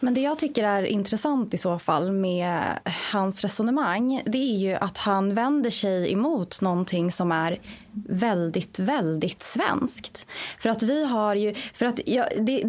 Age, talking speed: 20-39, 165 wpm